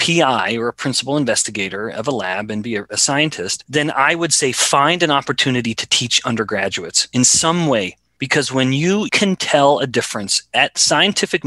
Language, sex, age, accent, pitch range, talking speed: English, male, 30-49, American, 115-160 Hz, 180 wpm